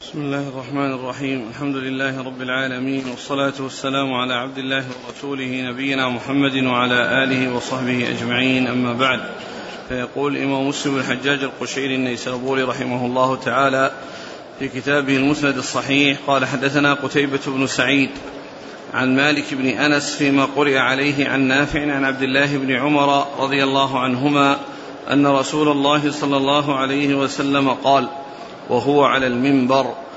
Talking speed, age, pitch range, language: 135 wpm, 40-59, 135-150 Hz, Arabic